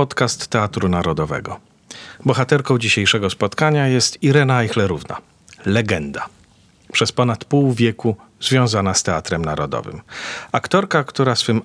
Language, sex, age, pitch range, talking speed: Polish, male, 40-59, 100-135 Hz, 110 wpm